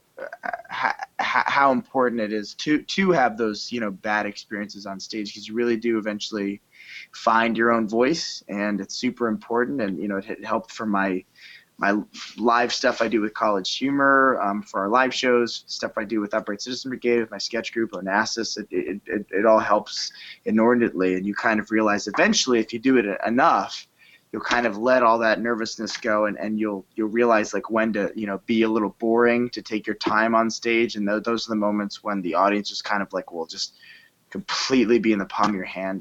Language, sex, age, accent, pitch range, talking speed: English, male, 20-39, American, 100-115 Hz, 210 wpm